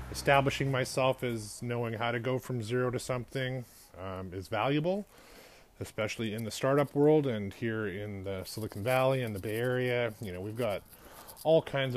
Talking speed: 175 wpm